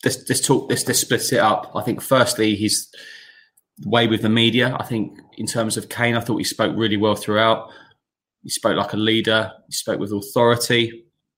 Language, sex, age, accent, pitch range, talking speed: English, male, 20-39, British, 105-120 Hz, 200 wpm